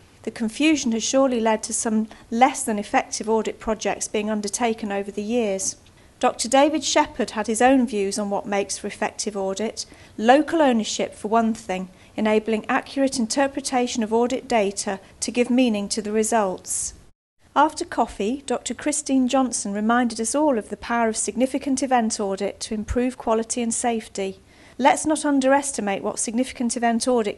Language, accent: English, British